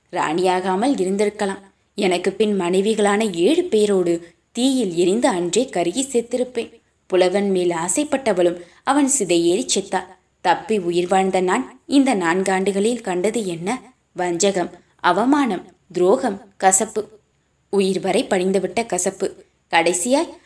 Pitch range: 180-220 Hz